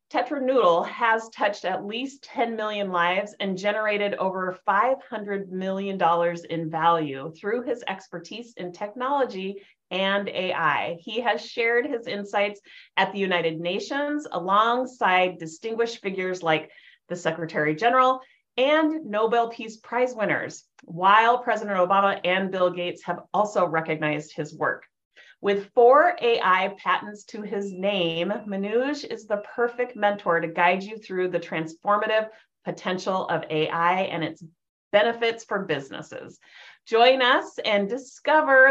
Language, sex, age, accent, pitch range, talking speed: English, female, 30-49, American, 180-235 Hz, 130 wpm